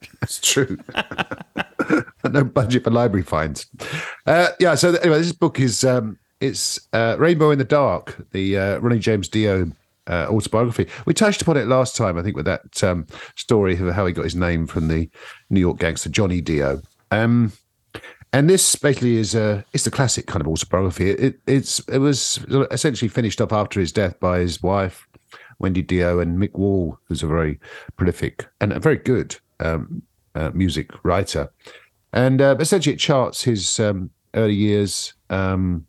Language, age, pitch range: English, 50-69, 90-120 Hz